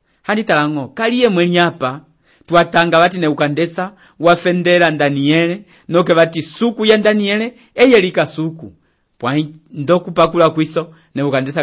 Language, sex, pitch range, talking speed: English, male, 130-165 Hz, 120 wpm